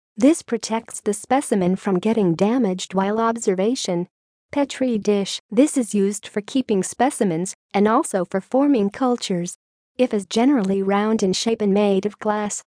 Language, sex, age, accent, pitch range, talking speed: English, female, 40-59, American, 195-240 Hz, 150 wpm